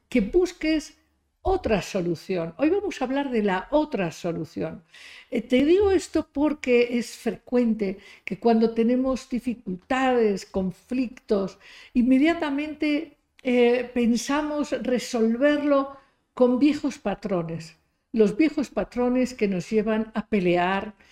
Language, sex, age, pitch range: Spanish, female, 60-79, 210-275 Hz